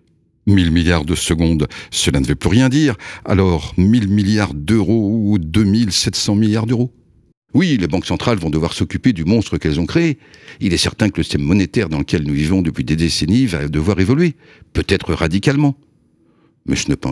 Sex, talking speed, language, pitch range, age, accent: male, 185 wpm, French, 80-110 Hz, 60-79, French